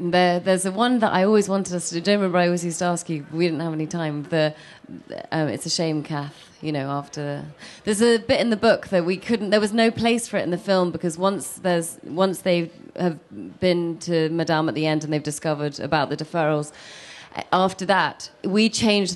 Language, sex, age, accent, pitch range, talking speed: English, female, 30-49, British, 155-185 Hz, 230 wpm